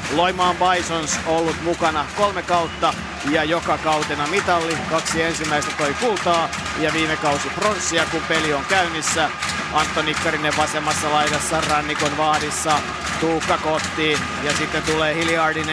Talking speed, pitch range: 130 wpm, 150-165 Hz